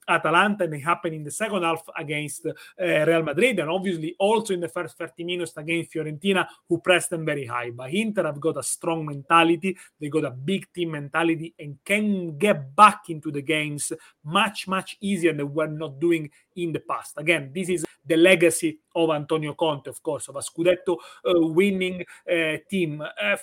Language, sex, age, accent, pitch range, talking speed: English, male, 30-49, Italian, 160-190 Hz, 190 wpm